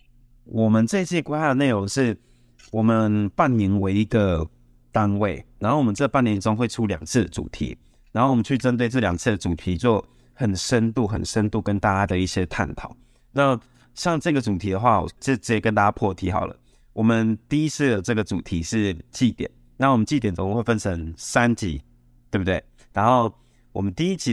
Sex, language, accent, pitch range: male, Chinese, native, 95-120 Hz